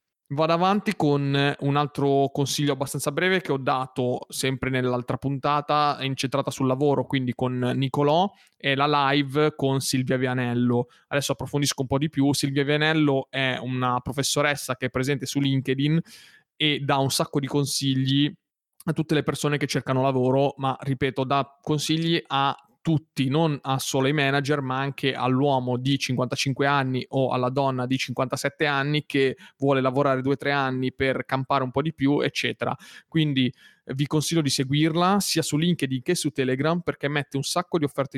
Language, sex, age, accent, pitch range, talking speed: Italian, male, 20-39, native, 130-150 Hz, 170 wpm